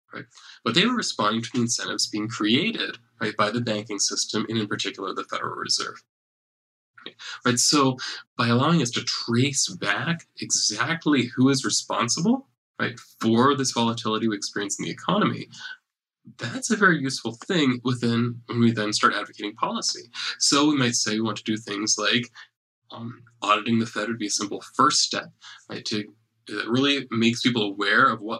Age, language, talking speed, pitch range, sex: 20-39, English, 180 wpm, 110-135 Hz, male